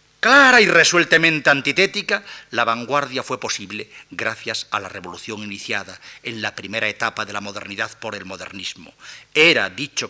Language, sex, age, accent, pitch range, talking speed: Spanish, male, 50-69, Spanish, 105-155 Hz, 150 wpm